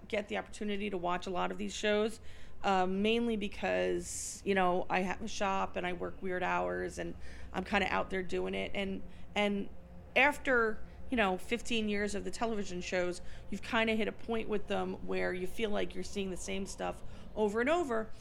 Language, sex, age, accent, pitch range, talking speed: English, female, 40-59, American, 175-210 Hz, 210 wpm